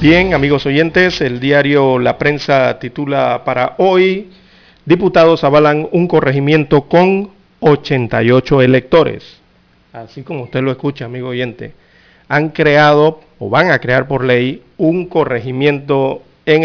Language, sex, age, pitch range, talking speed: Spanish, male, 50-69, 130-160 Hz, 125 wpm